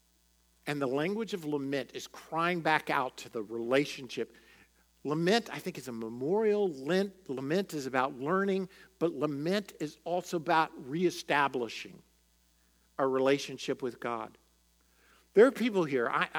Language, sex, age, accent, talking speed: English, male, 50-69, American, 135 wpm